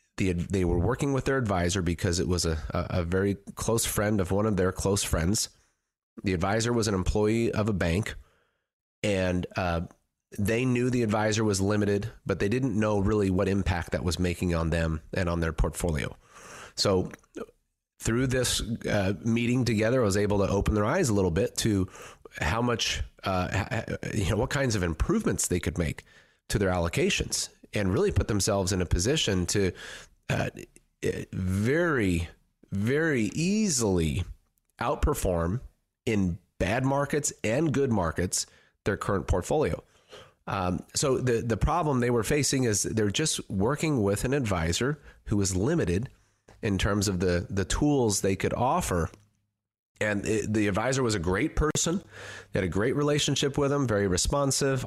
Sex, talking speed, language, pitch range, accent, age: male, 165 wpm, English, 95-120 Hz, American, 30-49